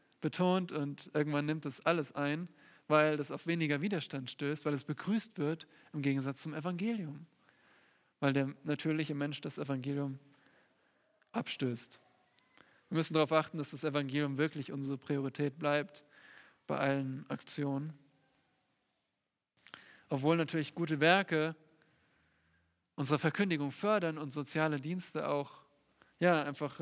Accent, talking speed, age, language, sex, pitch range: German, 125 wpm, 10-29, German, male, 145-165 Hz